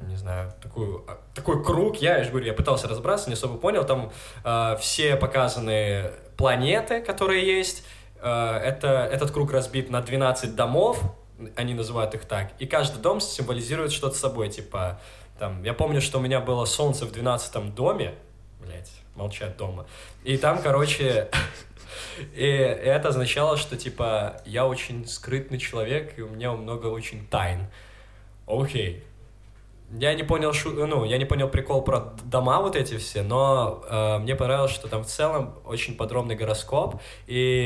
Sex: male